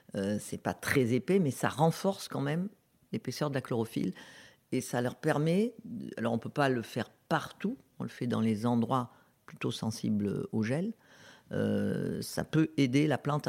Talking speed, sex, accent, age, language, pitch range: 185 wpm, female, French, 50-69, French, 125-155 Hz